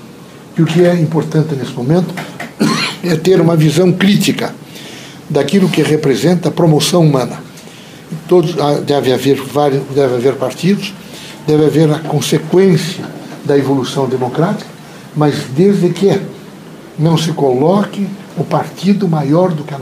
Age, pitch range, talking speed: 60-79, 150-190 Hz, 125 wpm